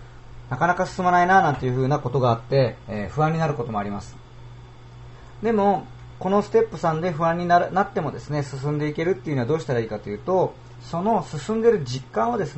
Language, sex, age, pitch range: Japanese, male, 40-59, 120-175 Hz